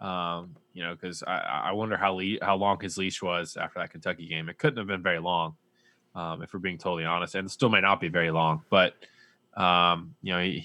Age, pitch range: 20-39, 85-100 Hz